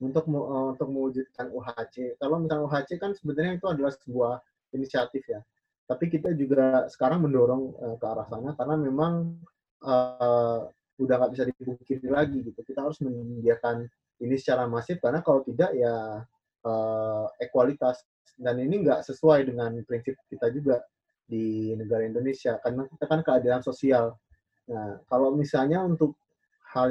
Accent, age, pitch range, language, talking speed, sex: native, 20-39, 120-150 Hz, Indonesian, 145 wpm, male